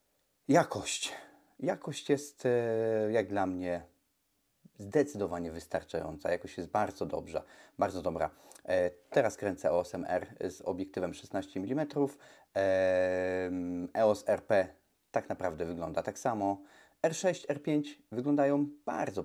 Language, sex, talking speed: Polish, male, 105 wpm